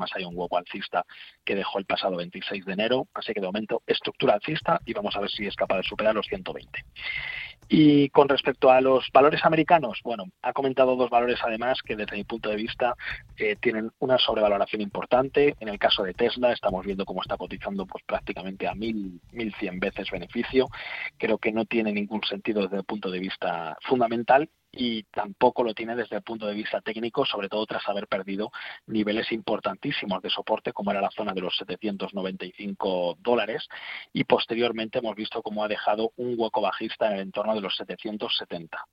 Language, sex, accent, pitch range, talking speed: Spanish, male, Spanish, 100-125 Hz, 190 wpm